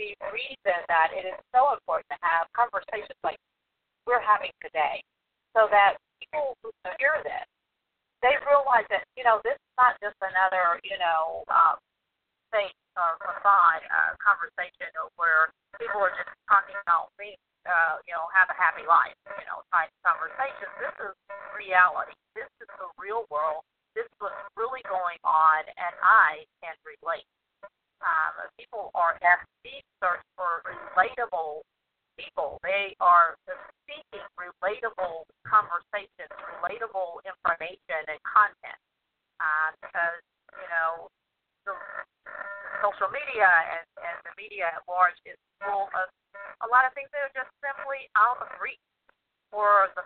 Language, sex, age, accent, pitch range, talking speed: English, female, 50-69, American, 175-230 Hz, 145 wpm